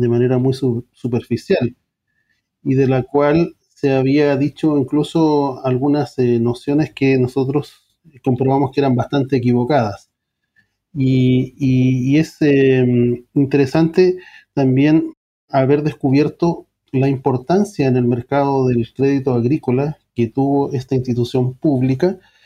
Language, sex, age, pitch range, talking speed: English, male, 40-59, 130-160 Hz, 120 wpm